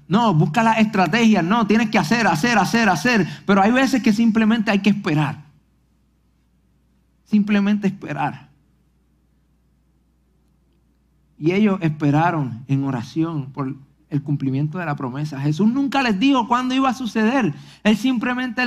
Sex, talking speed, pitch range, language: male, 135 wpm, 145-195 Hz, Spanish